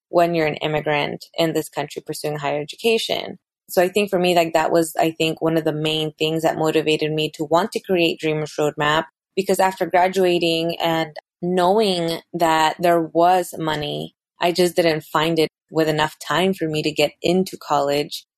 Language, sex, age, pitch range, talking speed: English, female, 20-39, 155-175 Hz, 185 wpm